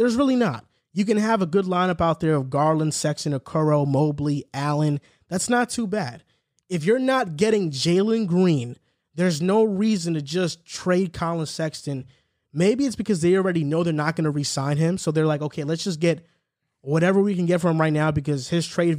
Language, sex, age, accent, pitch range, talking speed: English, male, 20-39, American, 145-180 Hz, 205 wpm